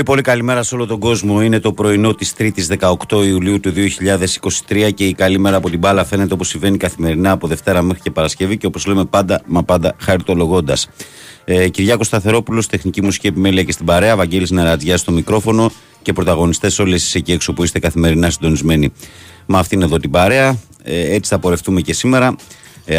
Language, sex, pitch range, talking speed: Greek, male, 80-100 Hz, 195 wpm